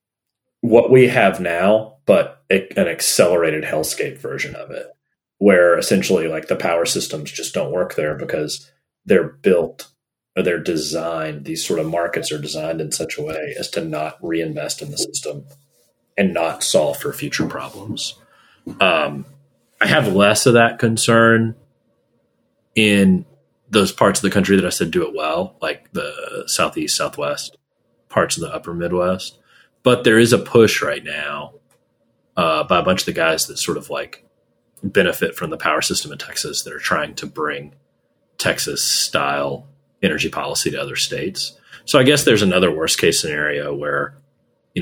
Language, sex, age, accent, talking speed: English, male, 30-49, American, 165 wpm